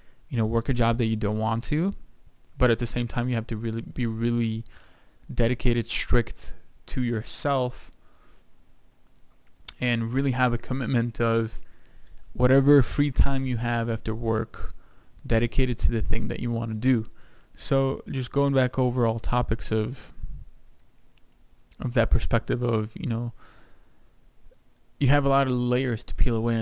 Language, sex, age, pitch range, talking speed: English, male, 20-39, 115-130 Hz, 160 wpm